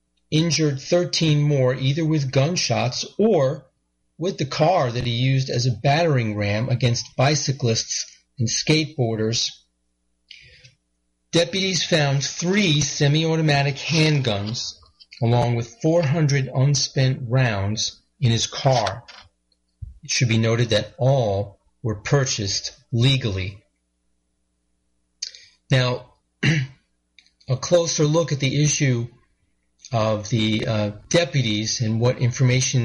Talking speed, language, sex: 105 wpm, English, male